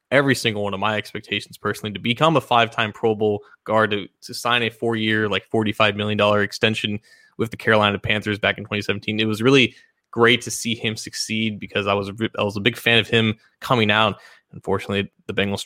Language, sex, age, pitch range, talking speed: English, male, 20-39, 105-135 Hz, 200 wpm